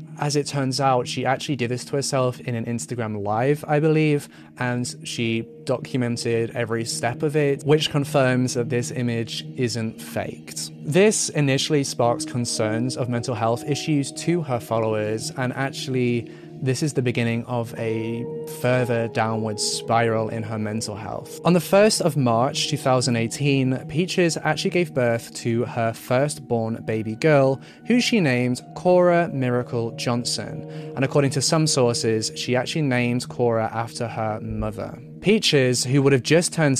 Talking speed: 155 wpm